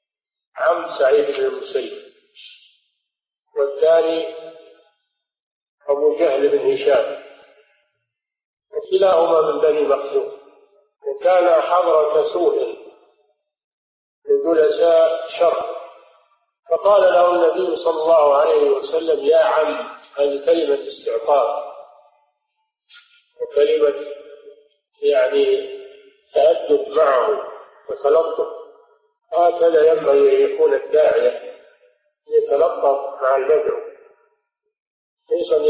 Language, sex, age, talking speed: Arabic, male, 50-69, 75 wpm